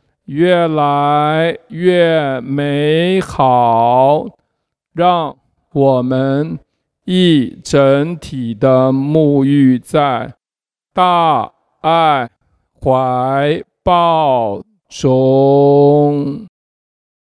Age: 50-69